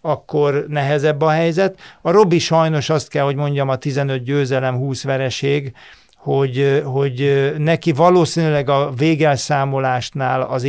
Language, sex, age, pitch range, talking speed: Hungarian, male, 50-69, 130-155 Hz, 130 wpm